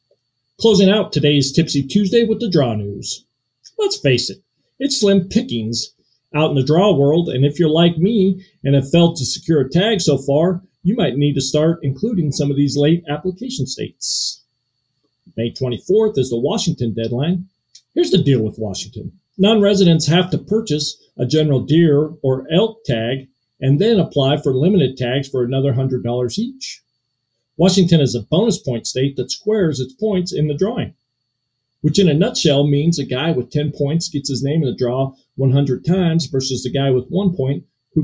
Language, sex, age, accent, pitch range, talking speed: English, male, 50-69, American, 130-185 Hz, 180 wpm